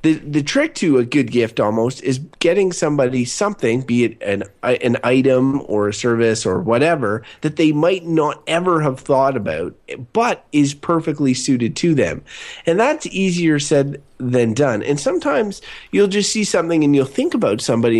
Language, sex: English, male